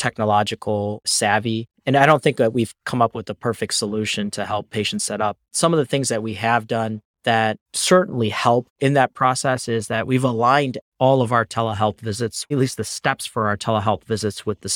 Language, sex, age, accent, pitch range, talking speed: English, male, 30-49, American, 105-120 Hz, 210 wpm